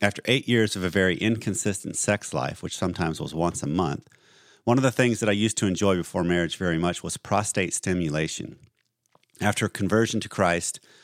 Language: English